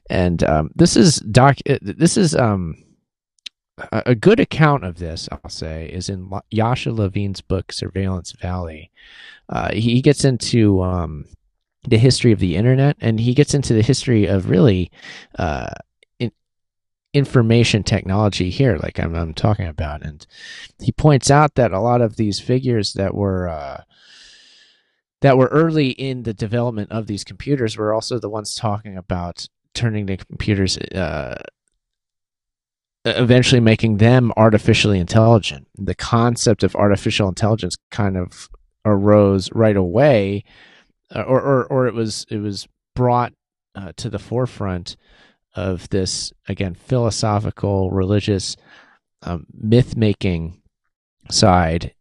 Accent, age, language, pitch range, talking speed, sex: American, 30-49, English, 95-120 Hz, 135 wpm, male